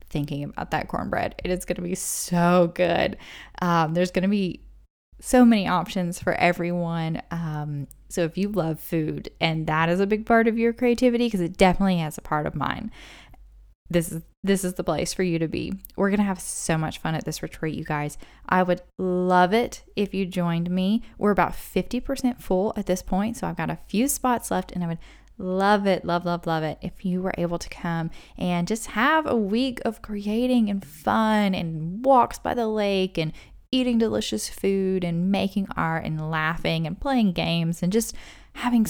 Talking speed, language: 205 wpm, English